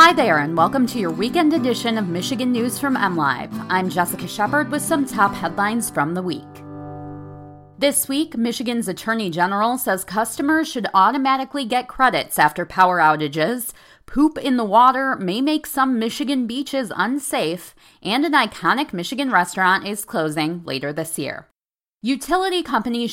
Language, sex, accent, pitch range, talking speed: English, female, American, 160-255 Hz, 155 wpm